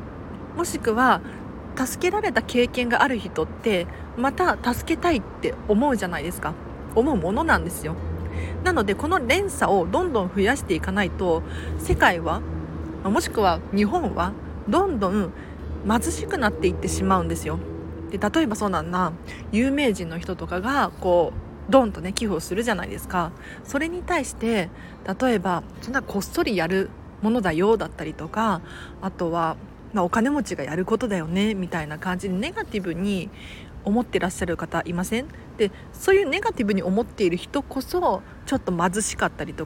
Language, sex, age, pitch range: Japanese, female, 40-59, 170-260 Hz